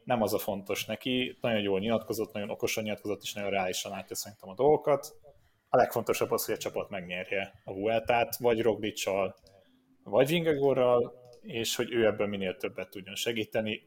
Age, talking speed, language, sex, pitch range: 30-49, 165 wpm, Hungarian, male, 105-125 Hz